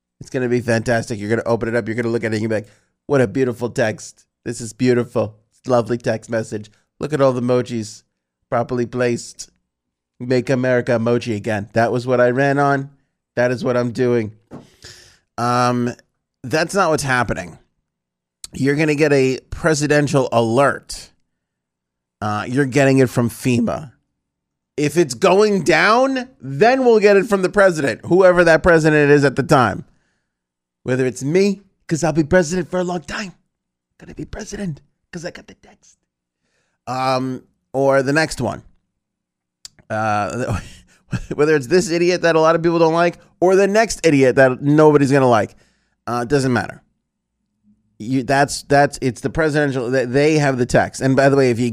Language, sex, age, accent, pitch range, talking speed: English, male, 30-49, American, 115-155 Hz, 185 wpm